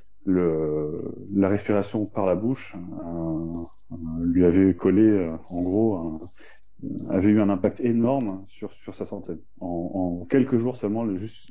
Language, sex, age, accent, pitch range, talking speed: French, male, 30-49, French, 90-110 Hz, 155 wpm